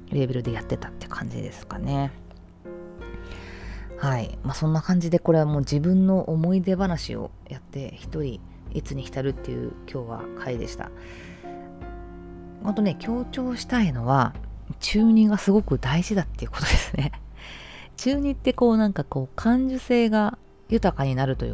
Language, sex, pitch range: Japanese, female, 125-200 Hz